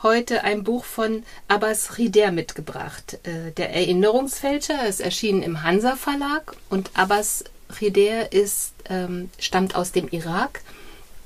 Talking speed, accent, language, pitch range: 130 wpm, German, German, 190-230 Hz